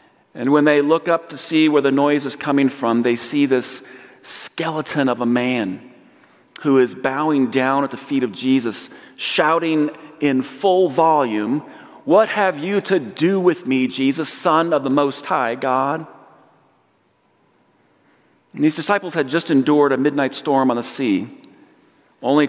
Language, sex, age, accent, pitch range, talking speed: English, male, 40-59, American, 120-145 Hz, 160 wpm